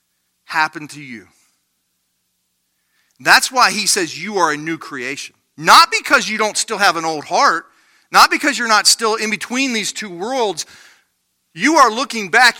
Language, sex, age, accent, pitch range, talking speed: English, male, 40-59, American, 140-230 Hz, 165 wpm